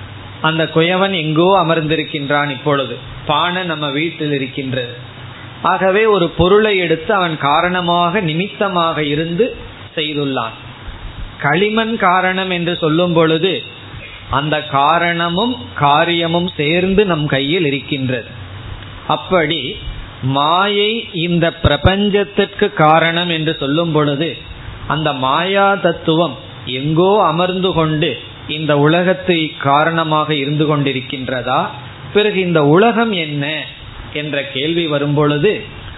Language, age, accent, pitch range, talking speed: Tamil, 20-39, native, 130-175 Hz, 90 wpm